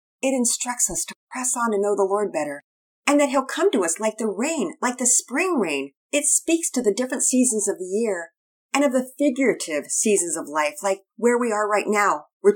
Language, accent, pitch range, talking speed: English, American, 180-260 Hz, 225 wpm